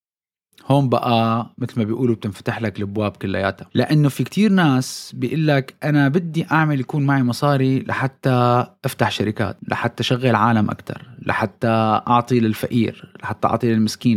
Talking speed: 145 wpm